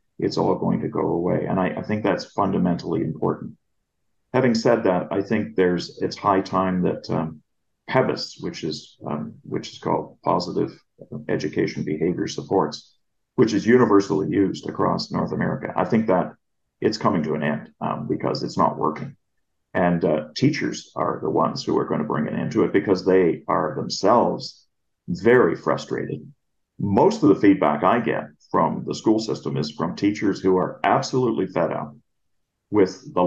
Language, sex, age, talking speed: English, male, 40-59, 175 wpm